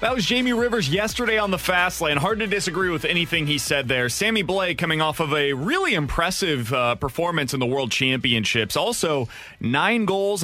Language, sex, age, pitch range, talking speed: English, male, 30-49, 115-160 Hz, 195 wpm